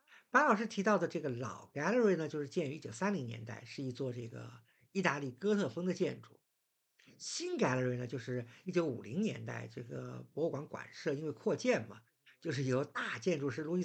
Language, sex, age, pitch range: Chinese, male, 50-69, 125-185 Hz